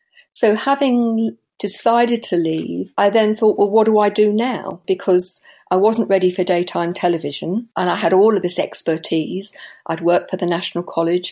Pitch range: 175-220 Hz